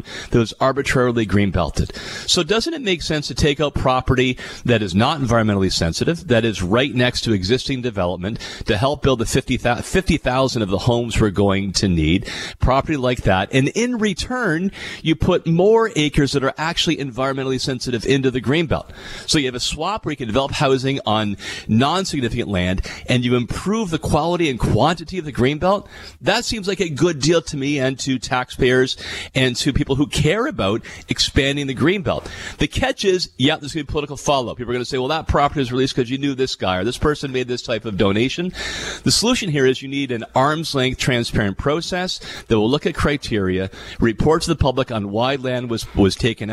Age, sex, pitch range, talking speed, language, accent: 40-59, male, 115-150 Hz, 205 wpm, English, American